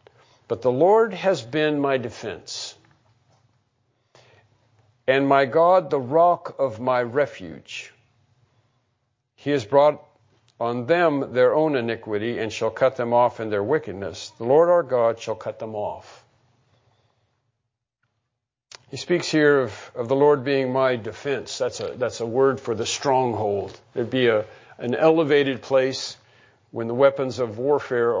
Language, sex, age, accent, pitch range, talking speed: English, male, 50-69, American, 120-145 Hz, 145 wpm